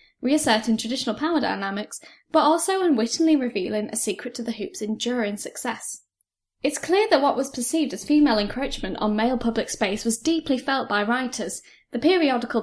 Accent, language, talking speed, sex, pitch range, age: British, English, 165 wpm, female, 220-290 Hz, 10-29